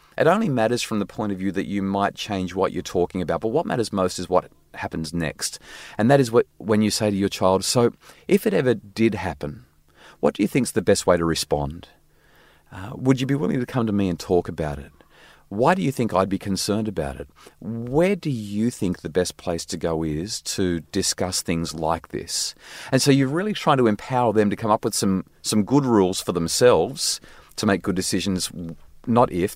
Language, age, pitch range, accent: English, 30-49, 80-110 Hz, Australian